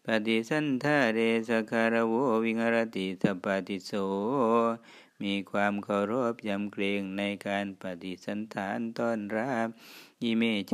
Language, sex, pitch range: Thai, male, 95-115 Hz